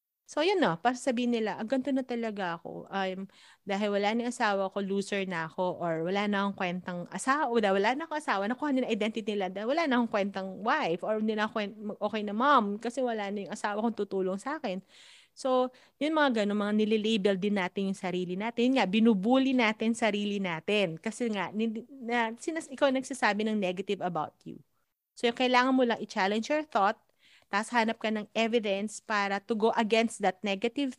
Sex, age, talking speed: female, 30-49, 195 wpm